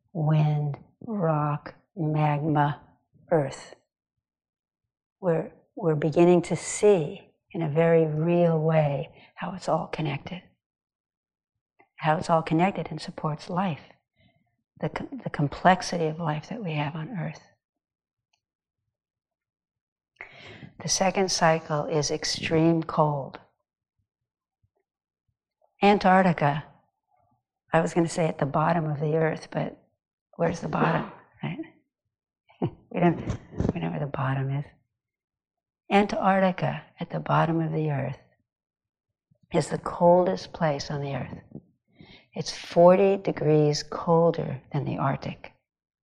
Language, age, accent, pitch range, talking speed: English, 60-79, American, 150-180 Hz, 115 wpm